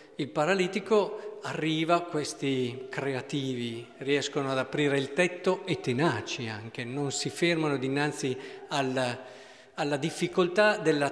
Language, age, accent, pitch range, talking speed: Italian, 50-69, native, 140-220 Hz, 115 wpm